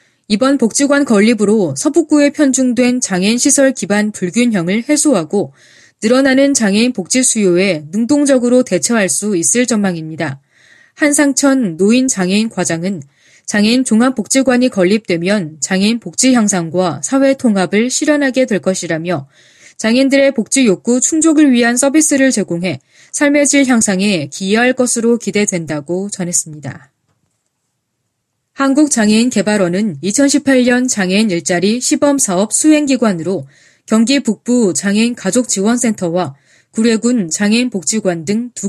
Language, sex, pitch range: Korean, female, 185-255 Hz